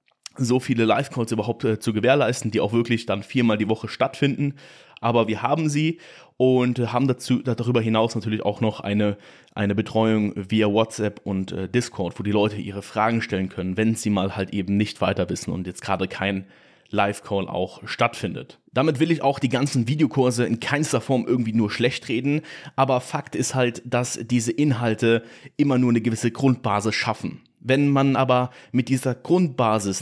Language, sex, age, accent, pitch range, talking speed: German, male, 30-49, German, 110-135 Hz, 180 wpm